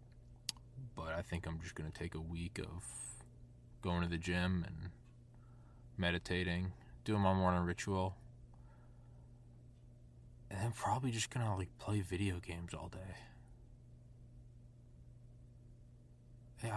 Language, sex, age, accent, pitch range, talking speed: English, male, 20-39, American, 95-120 Hz, 120 wpm